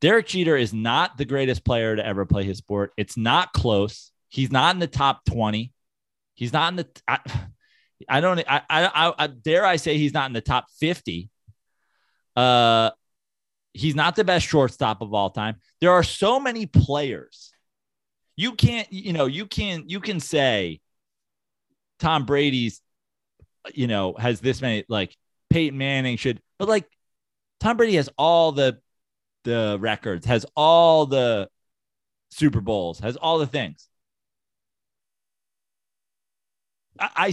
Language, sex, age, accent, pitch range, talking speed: English, male, 30-49, American, 110-160 Hz, 150 wpm